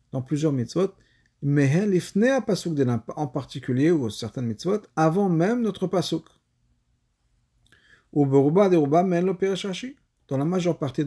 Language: French